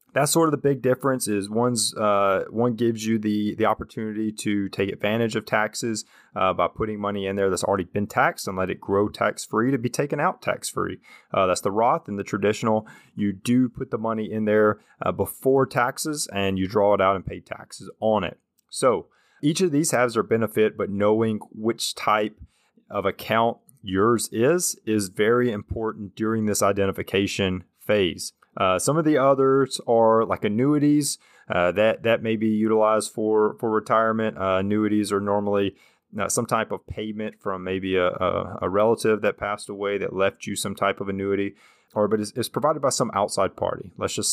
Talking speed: 190 wpm